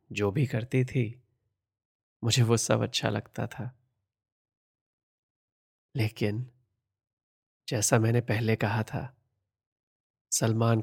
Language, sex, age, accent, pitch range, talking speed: Hindi, male, 30-49, native, 110-125 Hz, 95 wpm